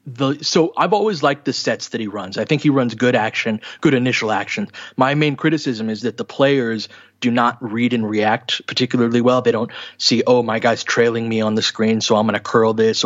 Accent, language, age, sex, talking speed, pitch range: American, English, 30-49, male, 225 wpm, 115-135 Hz